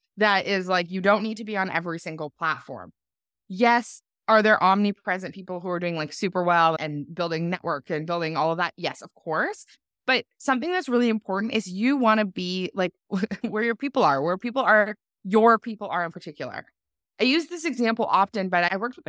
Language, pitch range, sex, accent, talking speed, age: English, 180-240 Hz, female, American, 205 wpm, 20-39